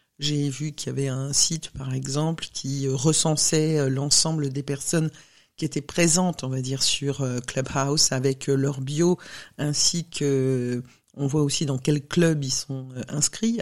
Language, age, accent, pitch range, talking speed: English, 50-69, French, 140-155 Hz, 160 wpm